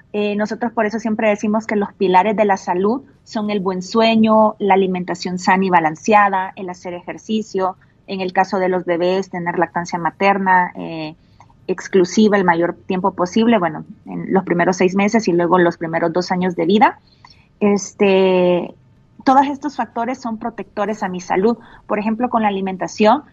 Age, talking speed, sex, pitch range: 30-49, 170 wpm, female, 180-220 Hz